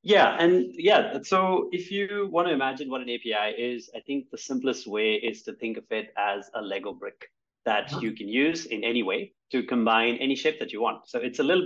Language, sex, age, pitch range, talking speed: English, male, 30-49, 110-135 Hz, 225 wpm